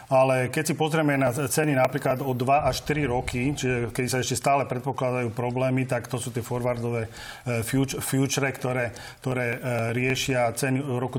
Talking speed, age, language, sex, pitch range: 160 wpm, 40-59, Slovak, male, 125-135 Hz